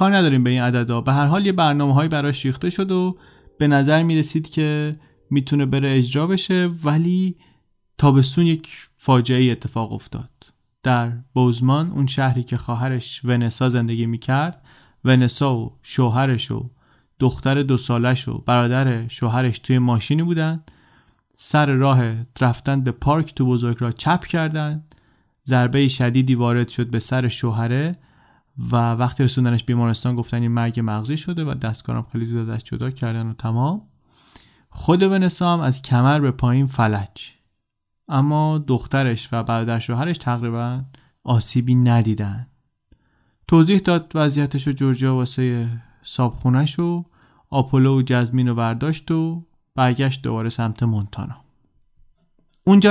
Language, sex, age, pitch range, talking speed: Persian, male, 30-49, 120-150 Hz, 135 wpm